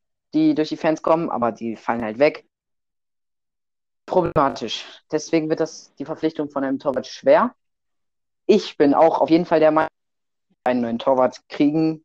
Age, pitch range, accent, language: 30-49, 140-185 Hz, German, German